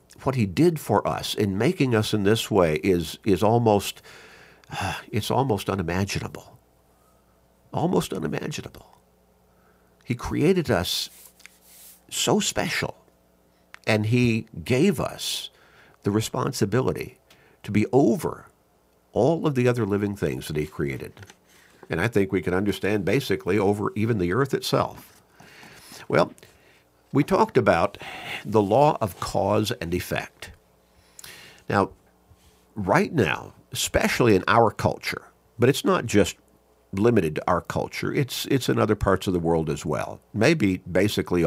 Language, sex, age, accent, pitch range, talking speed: English, male, 50-69, American, 75-110 Hz, 130 wpm